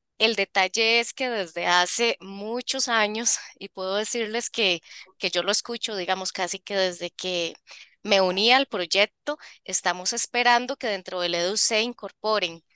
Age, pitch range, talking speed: 20-39, 185-235 Hz, 155 wpm